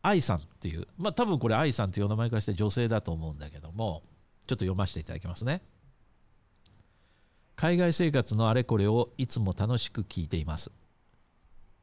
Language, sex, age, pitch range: Japanese, male, 50-69, 100-135 Hz